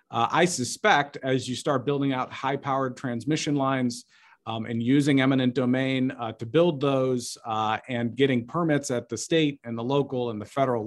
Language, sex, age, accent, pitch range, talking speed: English, male, 40-59, American, 115-135 Hz, 180 wpm